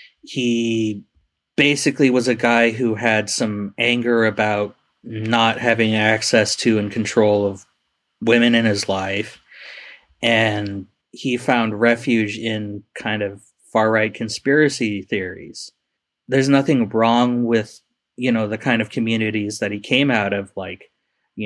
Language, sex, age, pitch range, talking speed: English, male, 30-49, 105-125 Hz, 135 wpm